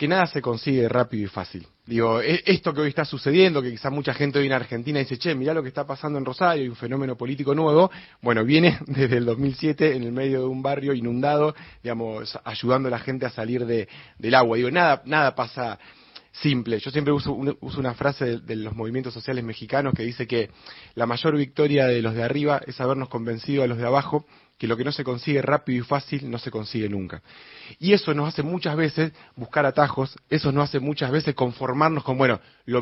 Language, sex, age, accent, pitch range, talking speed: Spanish, male, 30-49, Argentinian, 125-150 Hz, 225 wpm